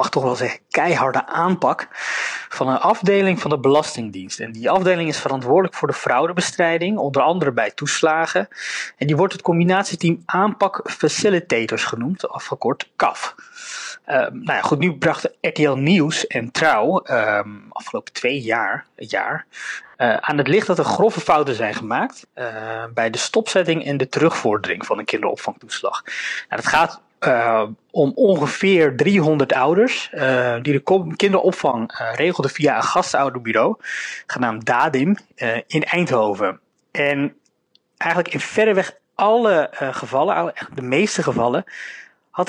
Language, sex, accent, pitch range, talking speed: Dutch, male, Dutch, 135-195 Hz, 145 wpm